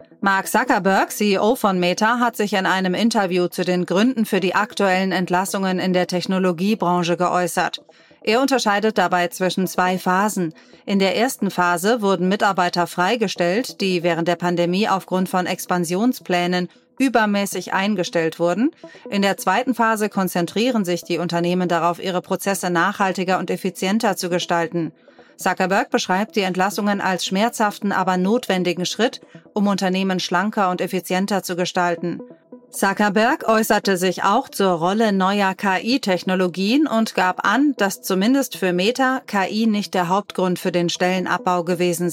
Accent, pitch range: German, 180-210 Hz